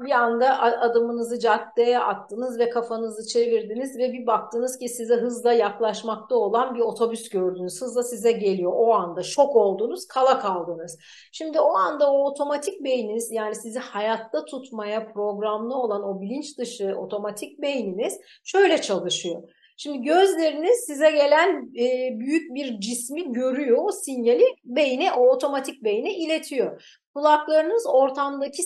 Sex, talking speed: female, 135 wpm